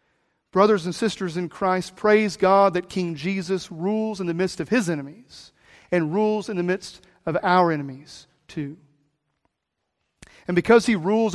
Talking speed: 160 wpm